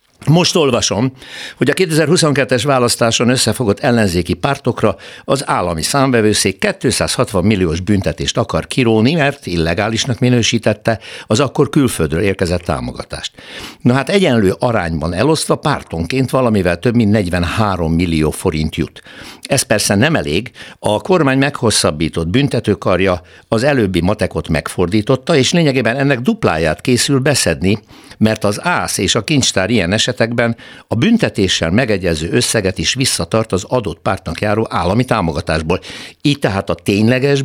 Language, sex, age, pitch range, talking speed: Hungarian, male, 60-79, 90-135 Hz, 130 wpm